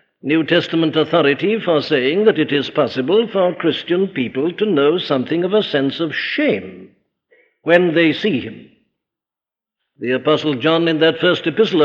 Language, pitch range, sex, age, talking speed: English, 145-185 Hz, male, 60-79, 155 wpm